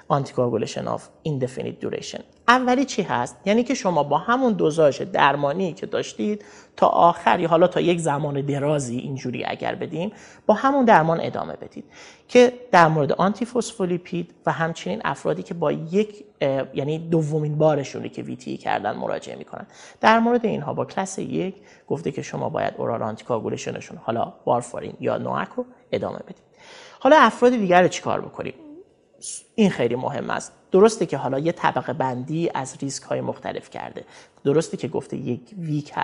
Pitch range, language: 140-220 Hz, Persian